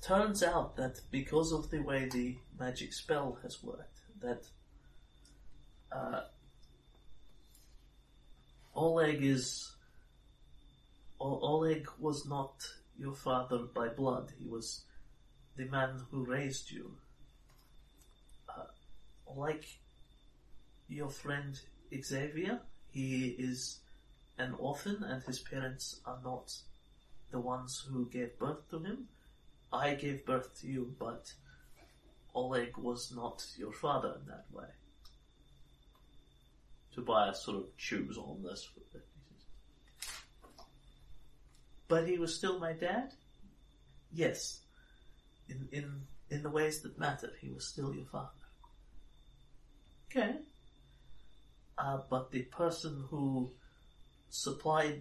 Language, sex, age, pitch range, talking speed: English, male, 30-49, 125-155 Hz, 105 wpm